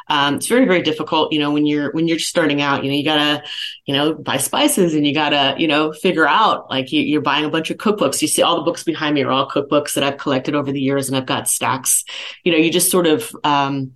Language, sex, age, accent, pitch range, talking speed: English, female, 30-49, American, 140-160 Hz, 270 wpm